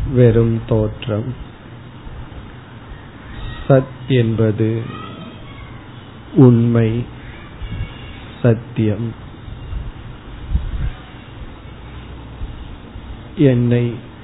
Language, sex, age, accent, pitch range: Tamil, male, 50-69, native, 105-120 Hz